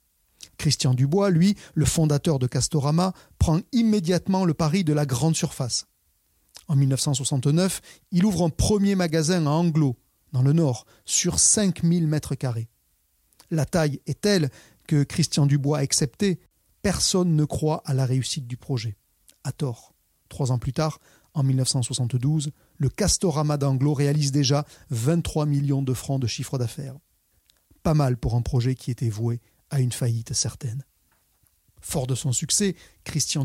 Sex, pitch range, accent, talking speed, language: male, 125-160 Hz, French, 150 wpm, French